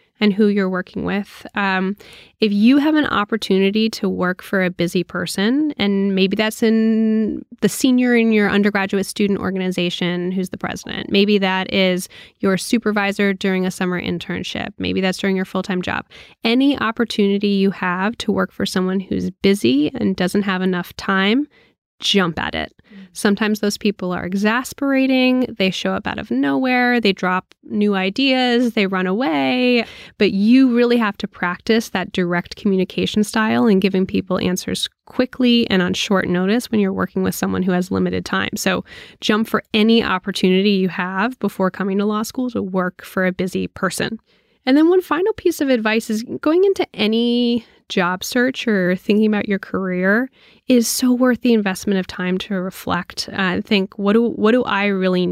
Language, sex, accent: English, female, American